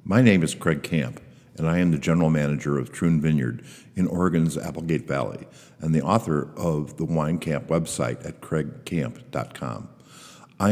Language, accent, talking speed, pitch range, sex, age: English, American, 160 wpm, 75-90 Hz, male, 60-79